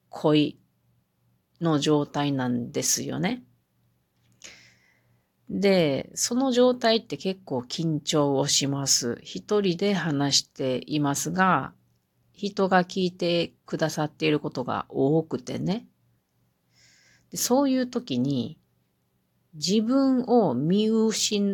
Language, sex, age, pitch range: Japanese, female, 40-59, 140-210 Hz